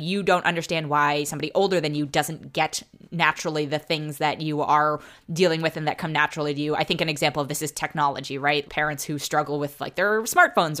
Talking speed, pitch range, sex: 220 wpm, 150-205 Hz, female